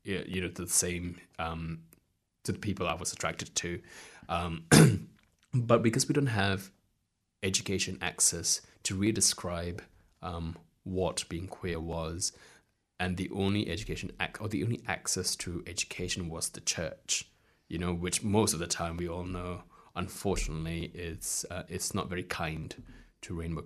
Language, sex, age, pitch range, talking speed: English, male, 20-39, 85-95 Hz, 155 wpm